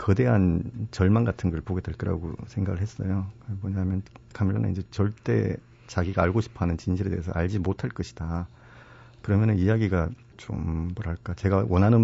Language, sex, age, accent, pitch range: Korean, male, 50-69, native, 90-115 Hz